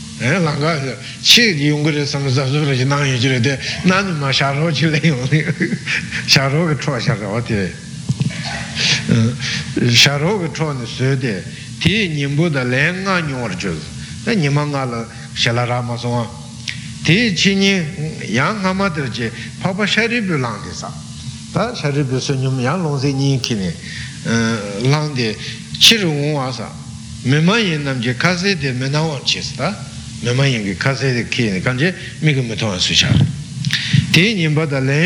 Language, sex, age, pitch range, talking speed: Italian, male, 60-79, 120-160 Hz, 70 wpm